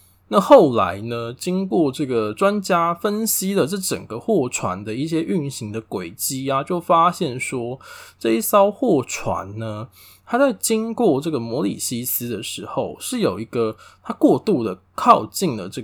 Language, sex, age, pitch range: Chinese, male, 20-39, 110-185 Hz